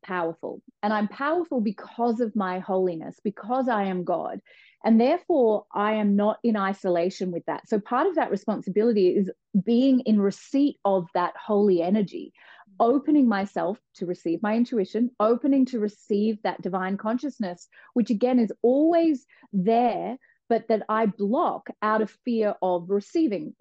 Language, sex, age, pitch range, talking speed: English, female, 30-49, 190-245 Hz, 150 wpm